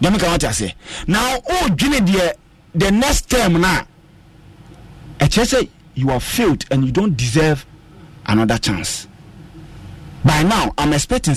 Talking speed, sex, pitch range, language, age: 105 wpm, male, 130-195 Hz, English, 40-59